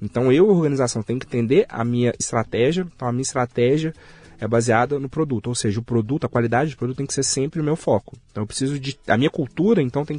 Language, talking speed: Portuguese, 240 wpm